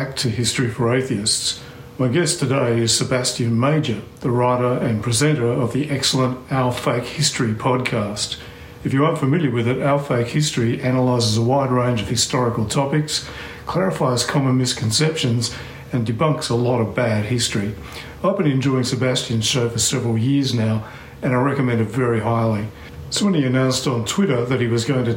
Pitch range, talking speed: 115-140 Hz, 175 wpm